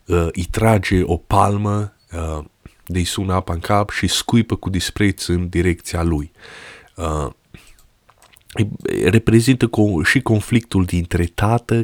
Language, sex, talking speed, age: Romanian, male, 110 wpm, 20-39